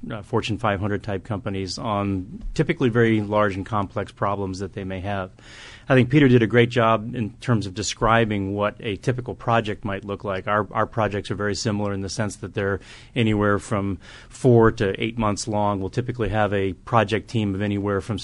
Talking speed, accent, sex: 195 wpm, American, male